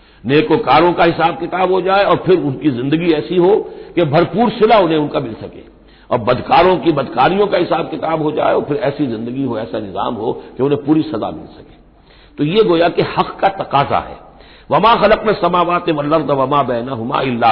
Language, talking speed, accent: Hindi, 185 wpm, native